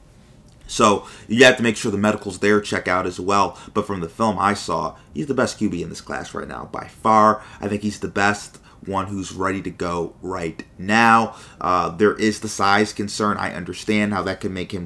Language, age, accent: English, 30-49, American